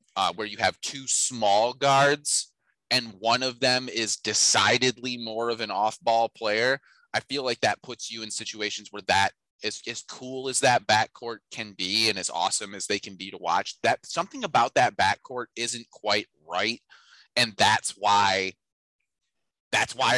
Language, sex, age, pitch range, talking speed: English, male, 30-49, 100-125 Hz, 170 wpm